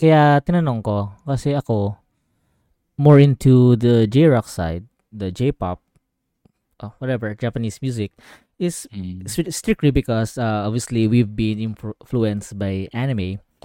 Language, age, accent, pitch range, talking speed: Filipino, 20-39, native, 105-135 Hz, 115 wpm